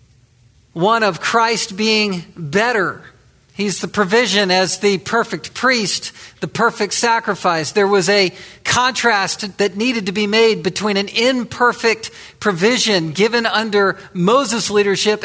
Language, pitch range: English, 180-225 Hz